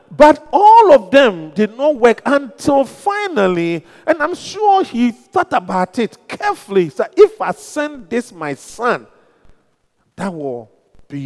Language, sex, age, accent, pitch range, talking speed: English, male, 50-69, Nigerian, 185-285 Hz, 145 wpm